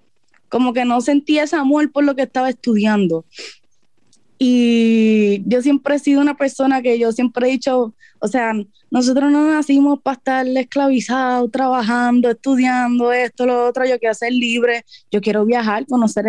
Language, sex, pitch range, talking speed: Spanish, female, 200-255 Hz, 160 wpm